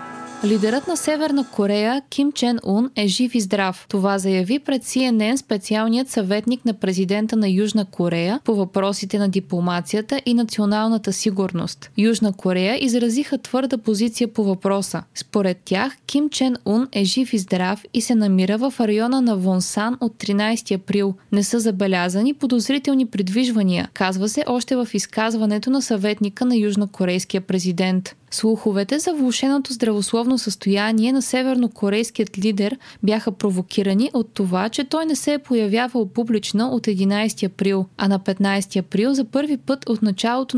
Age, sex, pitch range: 20-39, female, 200-245 Hz